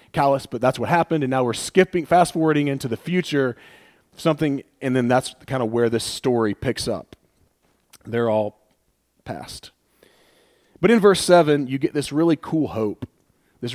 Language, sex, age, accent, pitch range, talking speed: English, male, 40-59, American, 115-150 Hz, 170 wpm